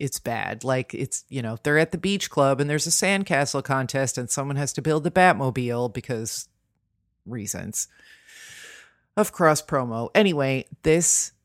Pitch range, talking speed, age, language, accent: 125-155 Hz, 155 wpm, 40-59, English, American